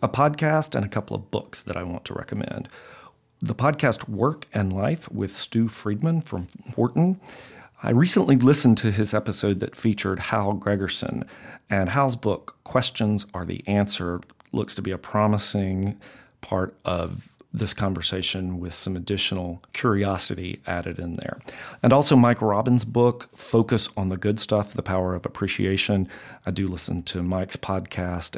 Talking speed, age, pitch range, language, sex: 160 wpm, 40-59, 95-125 Hz, English, male